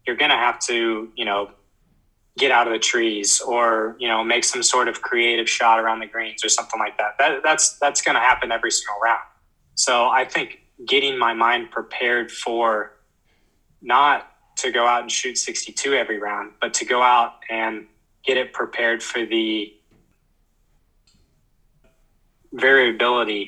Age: 20-39